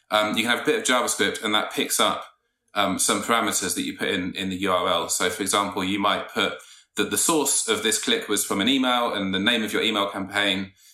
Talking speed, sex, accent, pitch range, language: 245 wpm, male, British, 95-110 Hz, English